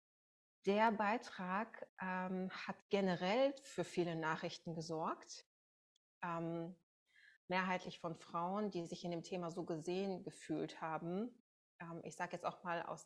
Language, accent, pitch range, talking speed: German, German, 170-190 Hz, 135 wpm